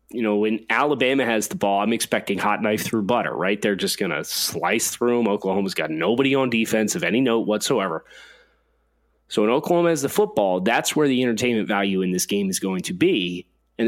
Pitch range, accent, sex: 100-115 Hz, American, male